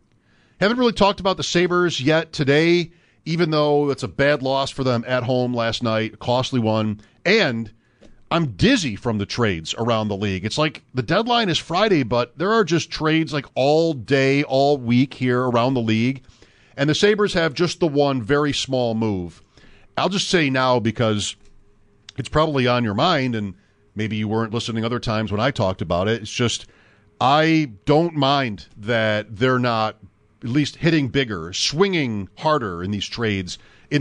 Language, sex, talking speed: English, male, 180 wpm